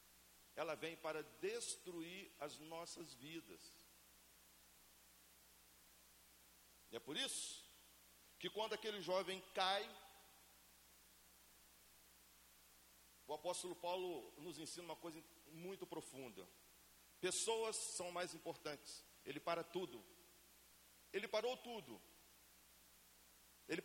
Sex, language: male, Portuguese